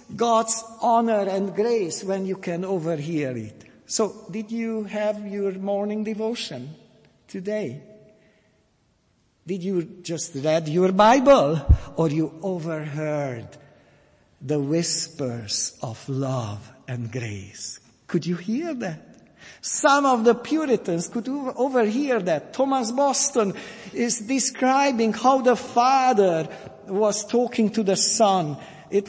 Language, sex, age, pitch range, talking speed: English, male, 60-79, 150-220 Hz, 115 wpm